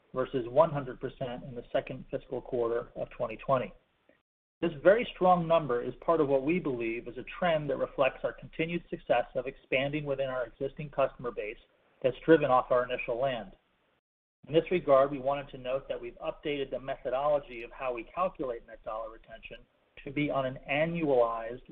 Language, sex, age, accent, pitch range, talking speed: English, male, 40-59, American, 125-155 Hz, 175 wpm